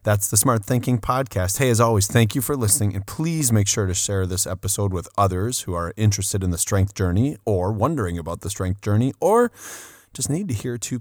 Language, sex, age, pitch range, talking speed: English, male, 30-49, 95-120 Hz, 225 wpm